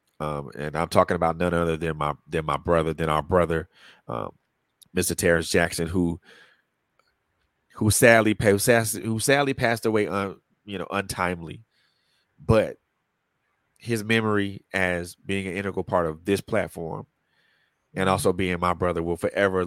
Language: English